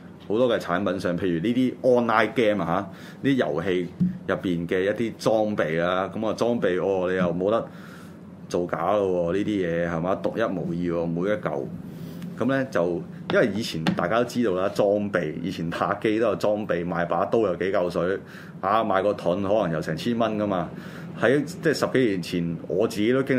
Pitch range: 90-115 Hz